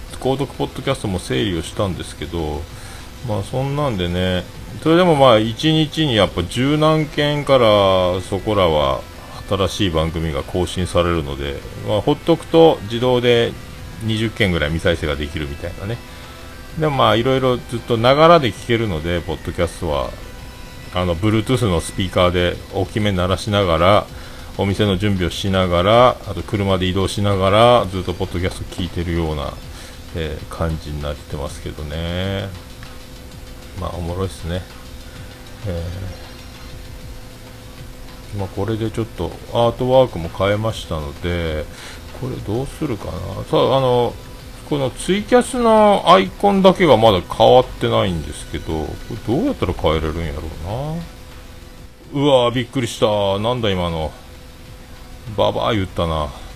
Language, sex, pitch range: Japanese, male, 85-125 Hz